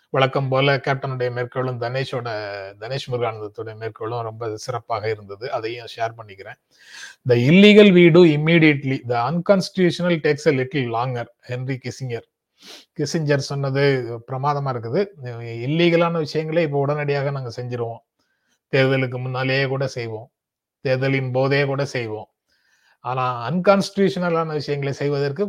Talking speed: 100 wpm